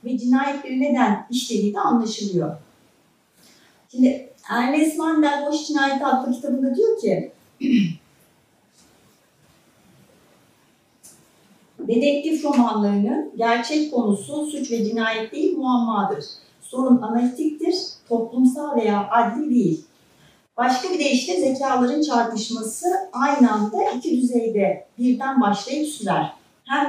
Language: Turkish